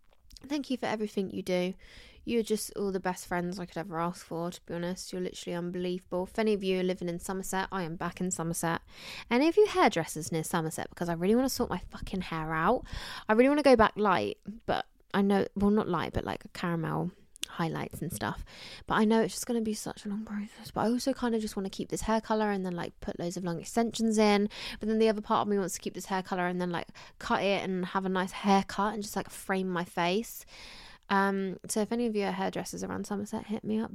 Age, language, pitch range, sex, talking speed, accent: 20-39, English, 175-215 Hz, female, 260 wpm, British